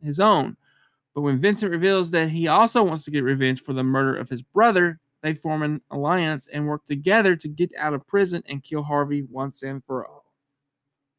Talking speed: 205 wpm